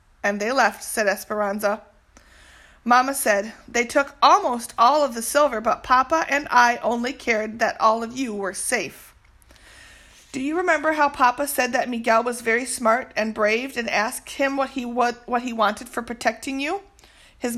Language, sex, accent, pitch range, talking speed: English, female, American, 225-270 Hz, 180 wpm